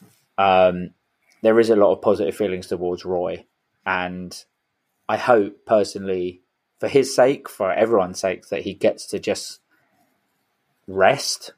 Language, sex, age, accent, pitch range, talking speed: English, male, 20-39, British, 95-105 Hz, 135 wpm